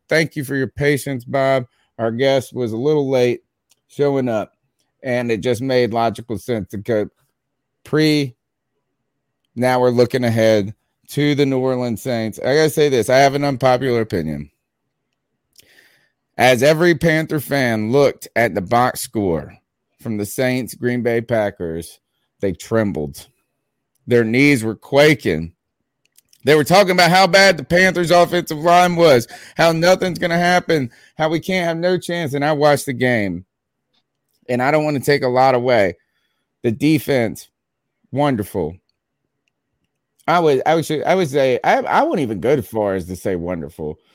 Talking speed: 160 wpm